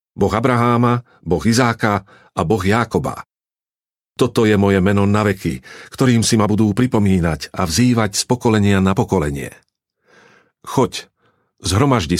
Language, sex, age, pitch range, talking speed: Slovak, male, 50-69, 100-125 Hz, 125 wpm